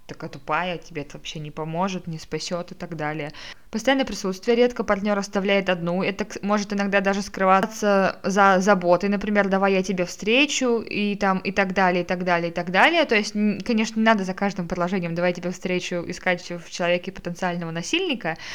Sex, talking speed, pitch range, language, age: female, 185 wpm, 180-205 Hz, Russian, 20-39